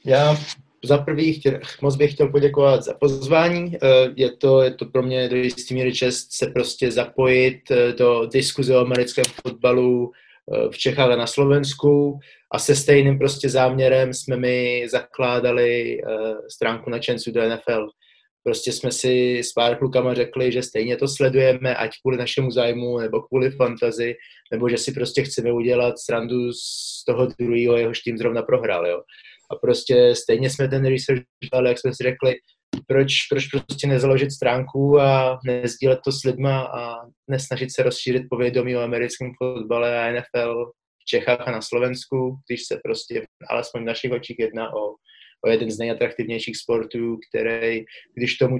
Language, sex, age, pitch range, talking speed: Slovak, male, 20-39, 120-135 Hz, 160 wpm